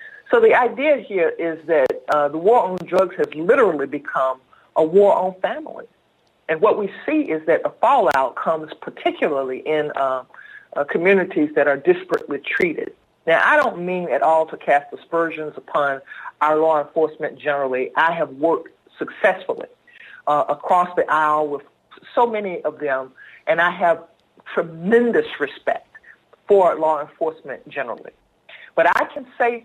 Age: 50-69